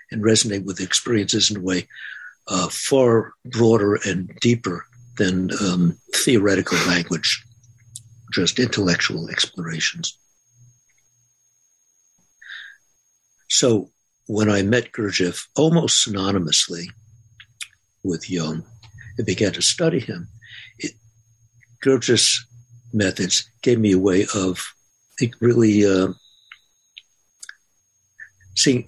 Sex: male